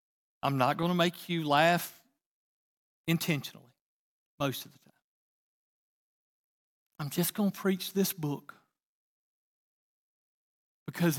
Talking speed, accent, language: 105 wpm, American, English